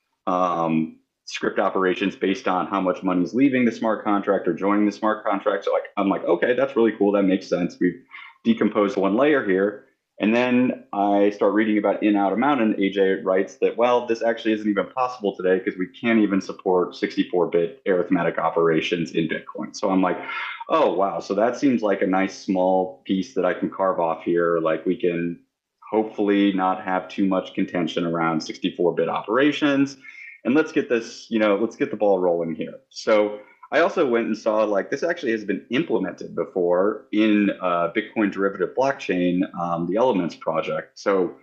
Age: 30-49